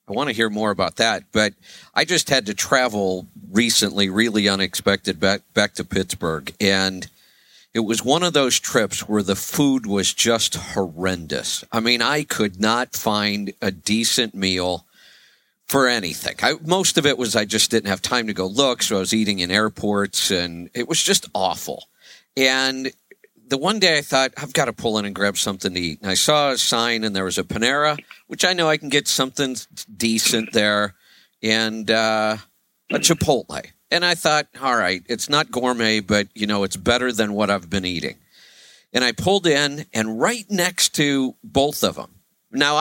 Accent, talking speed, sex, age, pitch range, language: American, 190 wpm, male, 50-69, 100-145 Hz, English